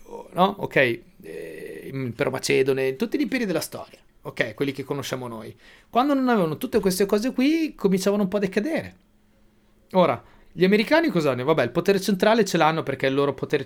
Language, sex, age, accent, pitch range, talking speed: Italian, male, 30-49, native, 125-170 Hz, 185 wpm